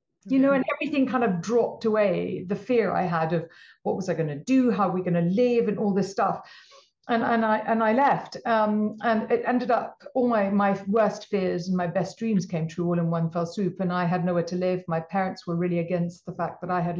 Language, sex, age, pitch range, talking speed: English, female, 50-69, 175-215 Hz, 255 wpm